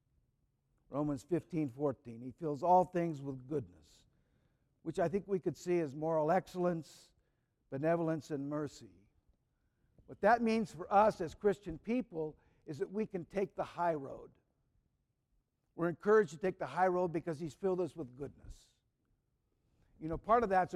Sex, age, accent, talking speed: male, 60-79, American, 160 wpm